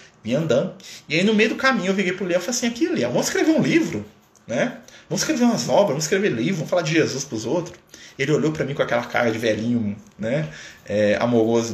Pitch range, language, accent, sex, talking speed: 115-155 Hz, Portuguese, Brazilian, male, 240 wpm